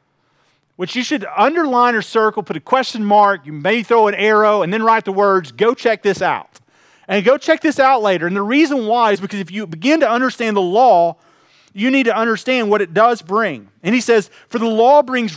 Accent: American